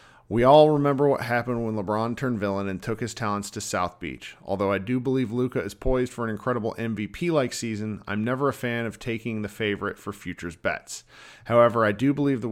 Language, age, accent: English, 40-59, American